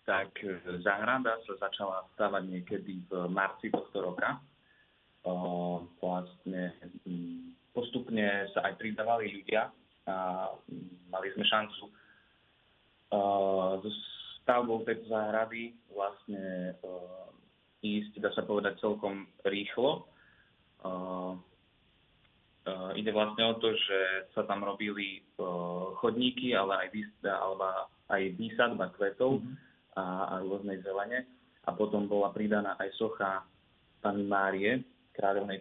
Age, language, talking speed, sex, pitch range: 20-39, Slovak, 95 wpm, male, 95-105 Hz